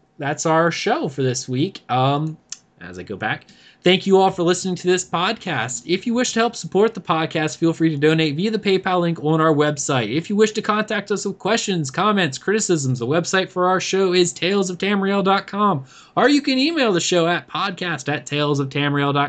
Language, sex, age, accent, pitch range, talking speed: English, male, 20-39, American, 130-190 Hz, 200 wpm